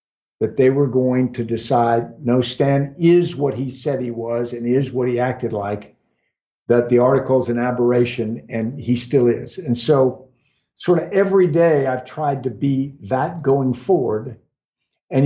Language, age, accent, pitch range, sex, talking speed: English, 60-79, American, 120-145 Hz, male, 170 wpm